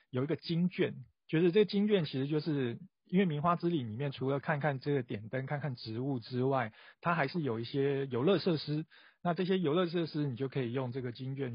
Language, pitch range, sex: Chinese, 125-170 Hz, male